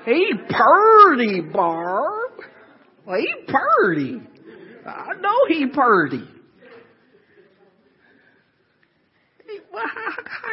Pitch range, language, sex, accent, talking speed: 170-270 Hz, English, male, American, 75 wpm